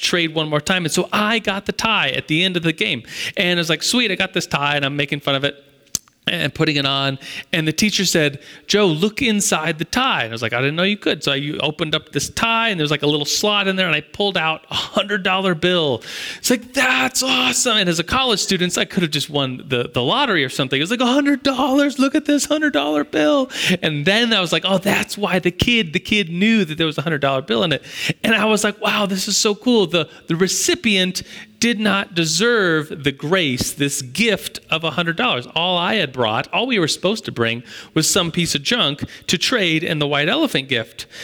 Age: 30-49